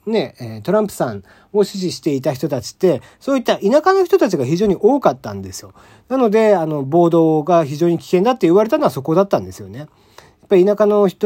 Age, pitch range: 40-59, 120-185 Hz